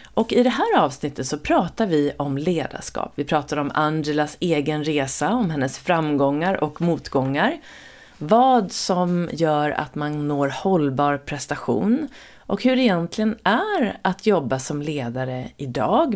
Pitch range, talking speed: 145-205 Hz, 145 wpm